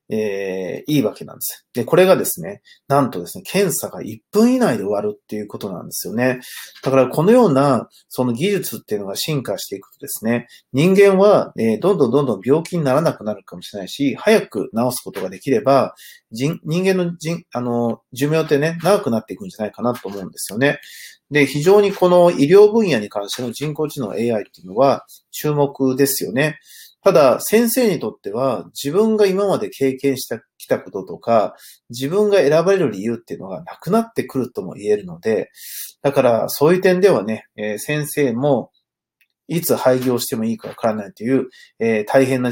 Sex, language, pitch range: male, Japanese, 120-195 Hz